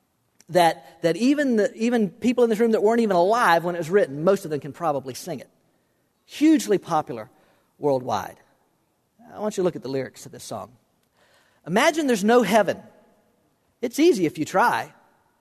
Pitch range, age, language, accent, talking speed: 170-260 Hz, 40-59, English, American, 185 wpm